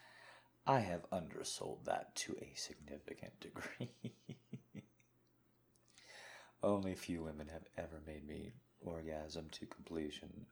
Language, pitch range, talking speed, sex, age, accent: English, 80-120 Hz, 105 wpm, male, 30-49, American